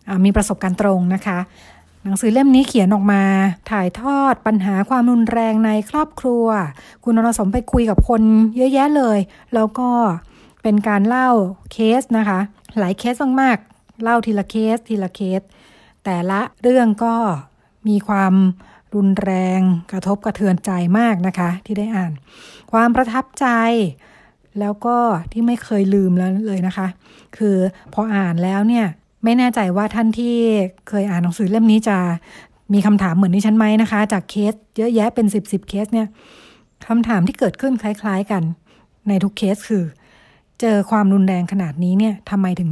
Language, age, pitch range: Thai, 60-79, 195-230 Hz